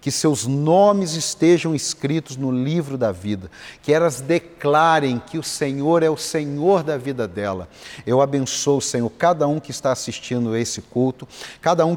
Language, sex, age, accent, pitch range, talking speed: Portuguese, male, 50-69, Brazilian, 125-155 Hz, 175 wpm